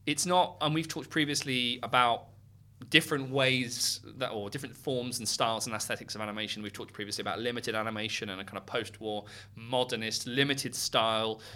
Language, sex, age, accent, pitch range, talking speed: English, male, 20-39, British, 110-130 Hz, 170 wpm